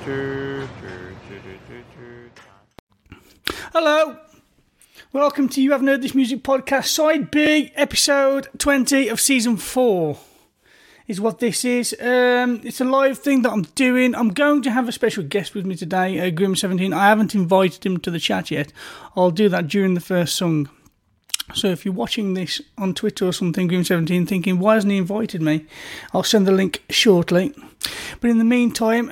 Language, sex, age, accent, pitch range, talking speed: English, male, 30-49, British, 190-245 Hz, 165 wpm